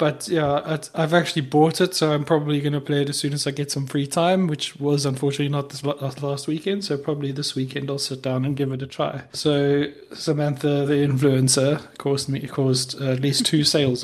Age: 30-49